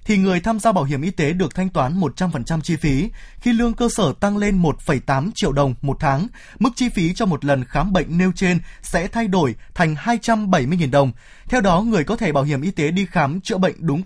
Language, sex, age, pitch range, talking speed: Vietnamese, male, 20-39, 145-200 Hz, 255 wpm